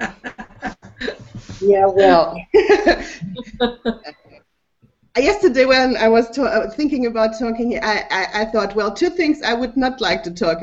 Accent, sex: German, female